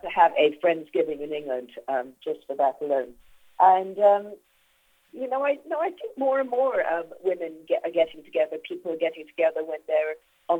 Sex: female